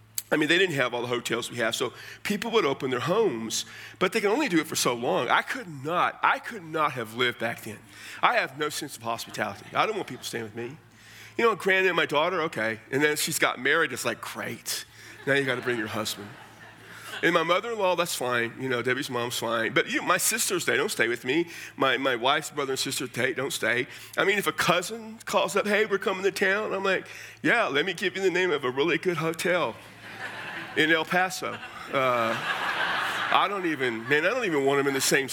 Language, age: English, 40-59